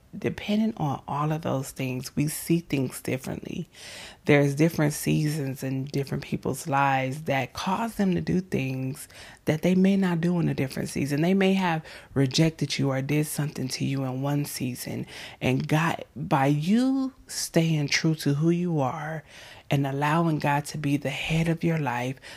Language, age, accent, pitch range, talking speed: English, 30-49, American, 135-165 Hz, 175 wpm